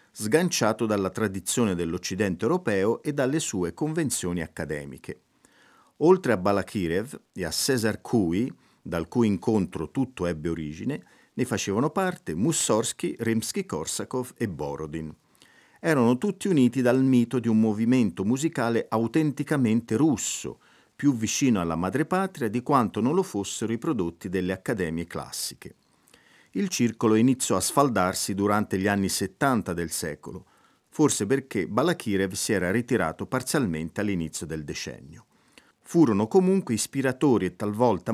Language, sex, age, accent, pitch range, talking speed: Italian, male, 50-69, native, 95-135 Hz, 125 wpm